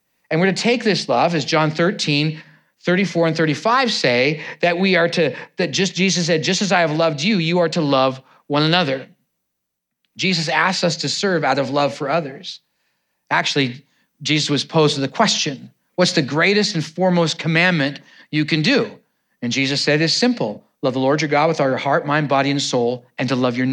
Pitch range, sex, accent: 135-180 Hz, male, American